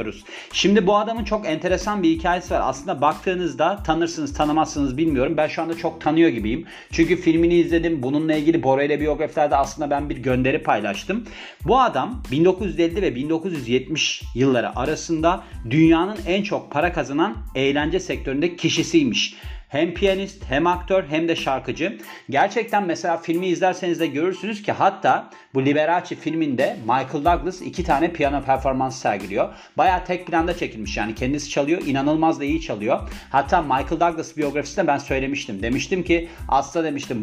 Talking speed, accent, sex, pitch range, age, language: 150 wpm, native, male, 130-170 Hz, 40-59, Turkish